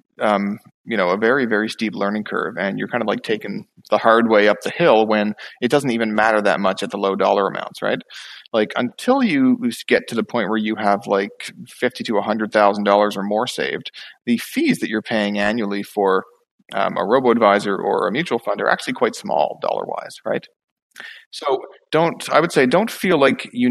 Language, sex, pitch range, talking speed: English, male, 100-115 Hz, 215 wpm